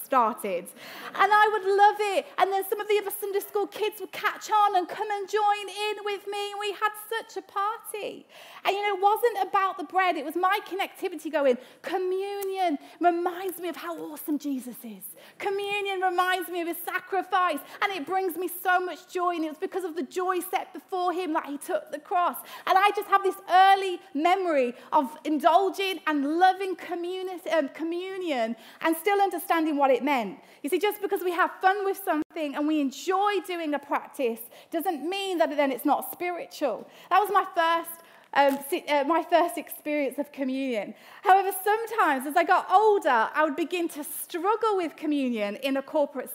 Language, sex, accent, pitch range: English, female, British, 305-390 Hz